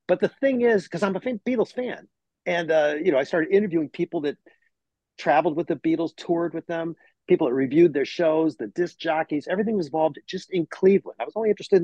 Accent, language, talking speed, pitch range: American, English, 220 wpm, 145-195 Hz